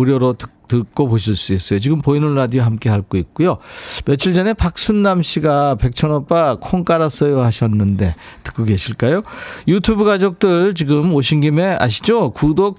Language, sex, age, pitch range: Korean, male, 40-59, 115-165 Hz